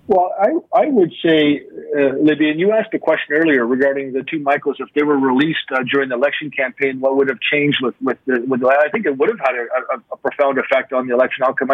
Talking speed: 255 wpm